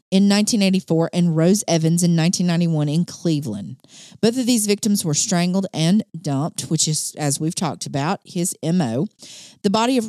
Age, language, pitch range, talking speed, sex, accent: 40-59, English, 160-205 Hz, 165 wpm, female, American